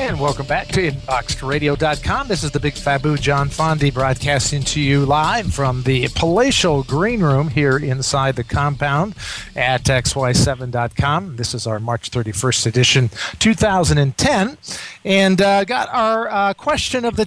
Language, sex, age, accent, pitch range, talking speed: English, male, 40-59, American, 125-155 Hz, 145 wpm